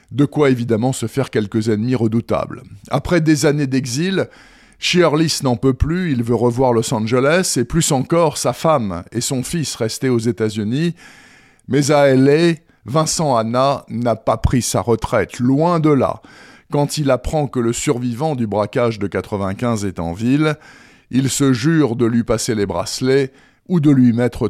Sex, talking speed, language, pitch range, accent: male, 175 wpm, French, 120-155 Hz, French